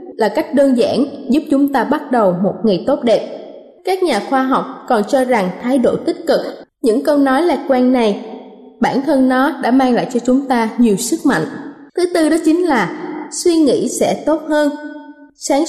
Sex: female